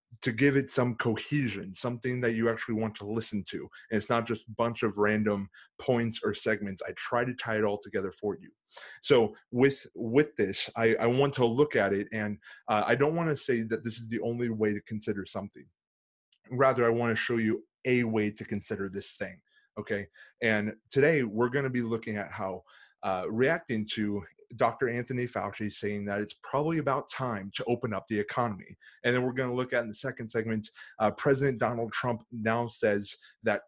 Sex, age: male, 30-49